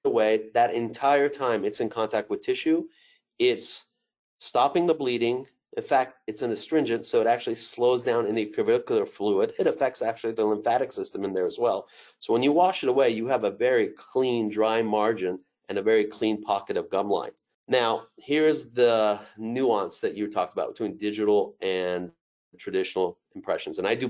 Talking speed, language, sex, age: 180 wpm, English, male, 30-49